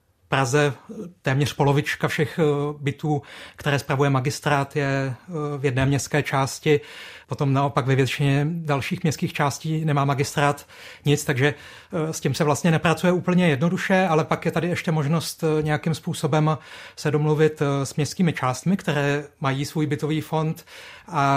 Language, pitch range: Czech, 140-160 Hz